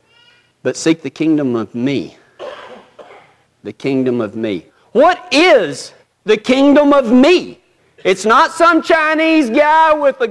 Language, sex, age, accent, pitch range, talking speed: English, male, 50-69, American, 225-300 Hz, 135 wpm